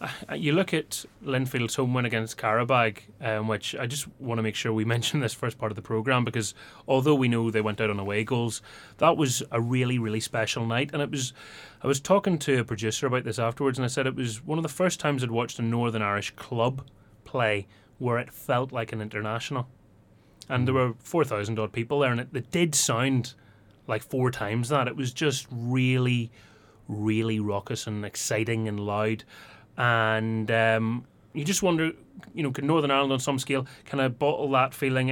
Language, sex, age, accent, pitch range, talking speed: English, male, 30-49, British, 115-140 Hz, 205 wpm